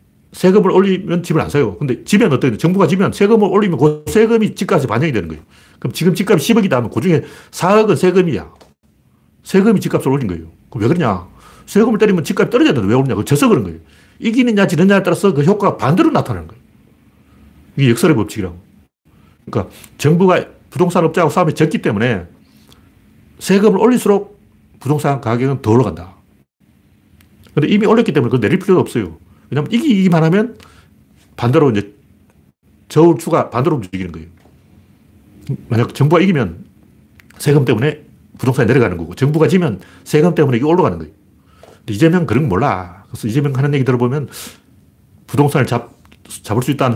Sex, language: male, Korean